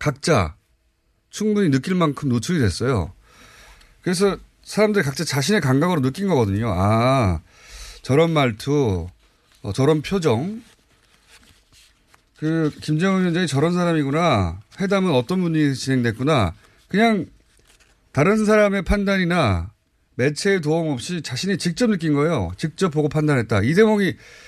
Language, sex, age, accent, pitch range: Korean, male, 30-49, native, 115-180 Hz